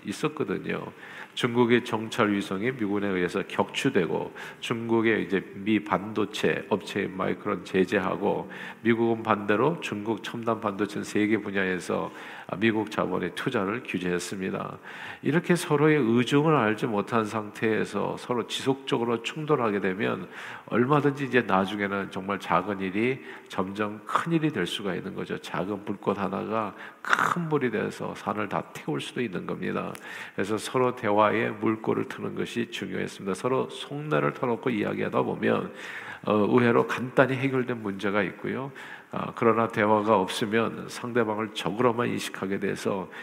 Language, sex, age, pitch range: Korean, male, 50-69, 100-125 Hz